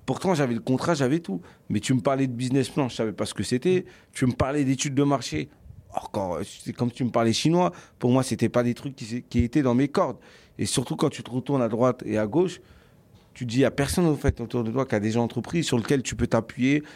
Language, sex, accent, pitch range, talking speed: French, male, French, 120-145 Hz, 275 wpm